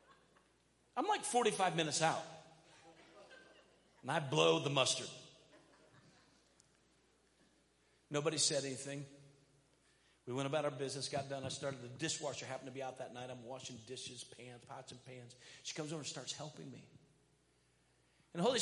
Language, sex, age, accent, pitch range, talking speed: English, male, 40-59, American, 130-165 Hz, 150 wpm